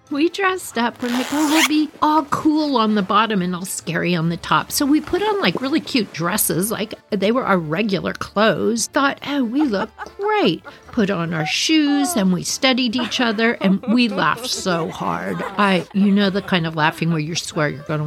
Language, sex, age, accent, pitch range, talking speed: English, female, 50-69, American, 175-250 Hz, 205 wpm